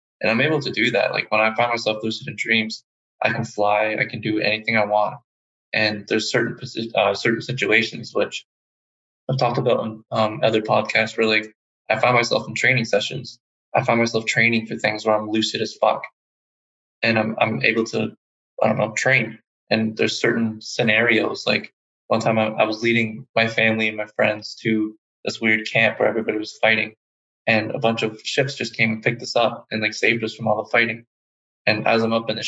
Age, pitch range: 20-39, 110-115 Hz